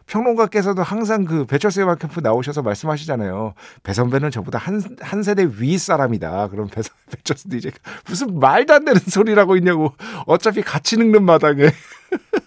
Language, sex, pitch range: Korean, male, 115-175 Hz